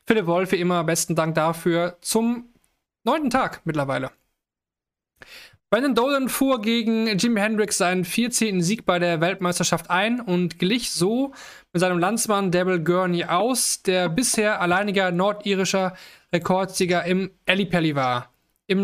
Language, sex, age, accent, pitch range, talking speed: German, male, 20-39, German, 175-205 Hz, 135 wpm